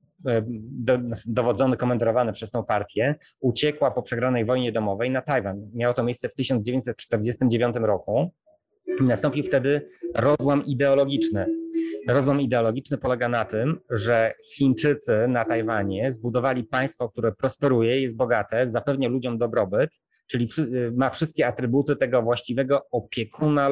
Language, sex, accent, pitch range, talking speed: Polish, male, native, 115-135 Hz, 120 wpm